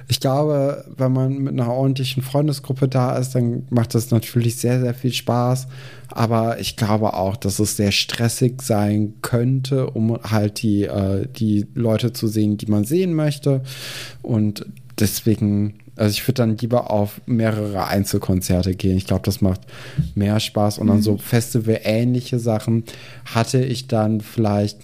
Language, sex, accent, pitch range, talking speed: German, male, German, 105-130 Hz, 160 wpm